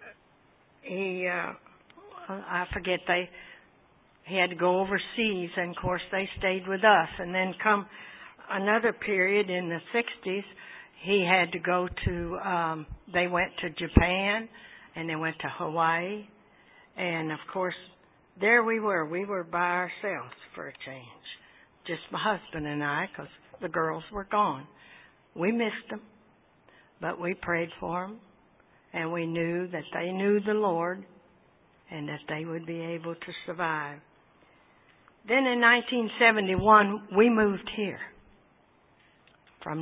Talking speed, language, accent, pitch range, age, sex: 140 wpm, English, American, 170-200 Hz, 60-79, female